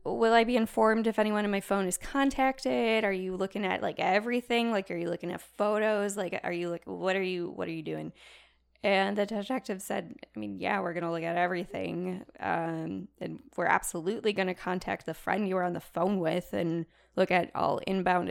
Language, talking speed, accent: English, 220 wpm, American